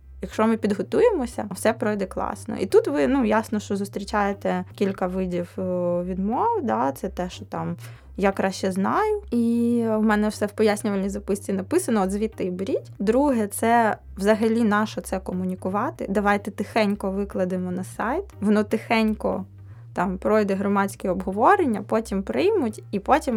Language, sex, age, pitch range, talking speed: Ukrainian, female, 20-39, 185-220 Hz, 150 wpm